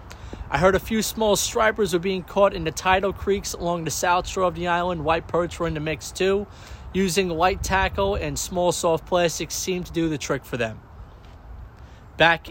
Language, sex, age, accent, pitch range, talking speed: English, male, 30-49, American, 135-175 Hz, 200 wpm